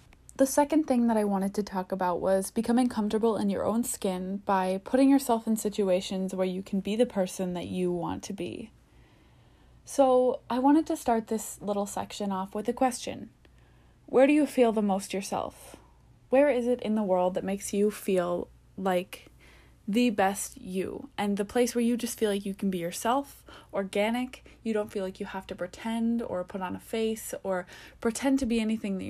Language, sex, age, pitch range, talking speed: English, female, 20-39, 190-245 Hz, 200 wpm